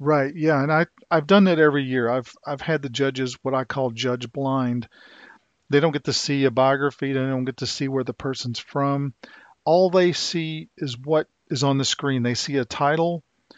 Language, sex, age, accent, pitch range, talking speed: English, male, 40-59, American, 125-150 Hz, 210 wpm